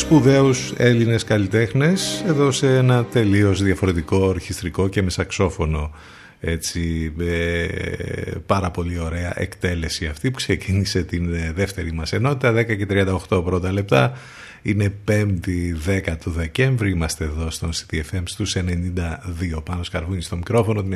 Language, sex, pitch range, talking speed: Greek, male, 90-115 Hz, 125 wpm